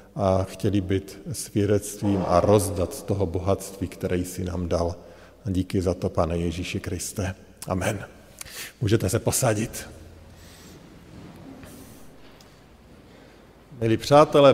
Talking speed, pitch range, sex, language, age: 105 wpm, 100-140 Hz, male, Slovak, 50-69